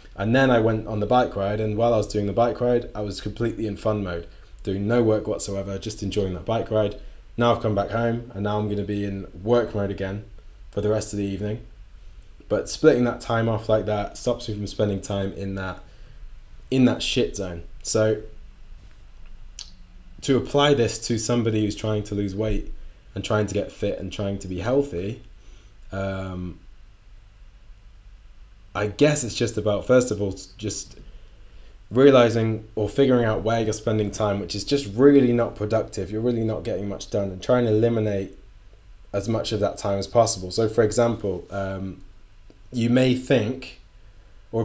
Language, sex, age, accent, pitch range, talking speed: English, male, 20-39, British, 100-115 Hz, 190 wpm